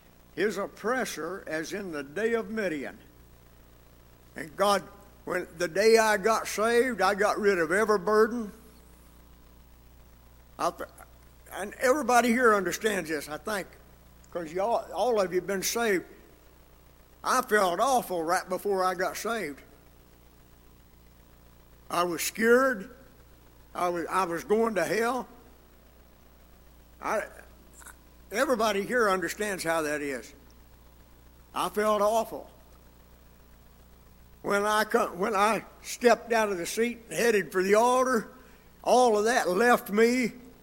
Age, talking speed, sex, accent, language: 60-79, 125 wpm, male, American, English